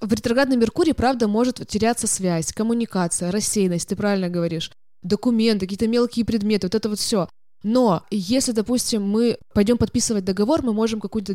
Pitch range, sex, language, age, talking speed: 185-230 Hz, female, Russian, 20-39, 160 wpm